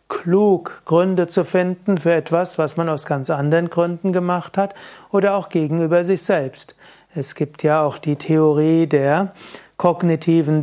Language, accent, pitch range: German, German, 155-185 Hz